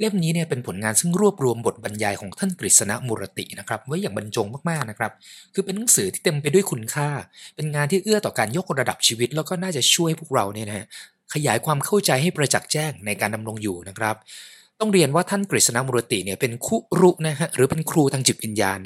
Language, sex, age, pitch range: Thai, male, 20-39, 115-180 Hz